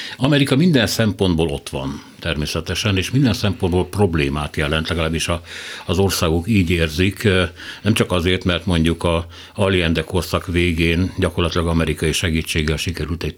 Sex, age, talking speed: male, 60-79, 140 wpm